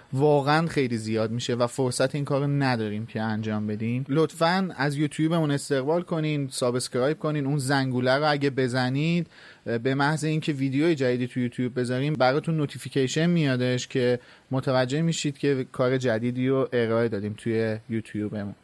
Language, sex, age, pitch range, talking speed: Persian, male, 30-49, 125-155 Hz, 155 wpm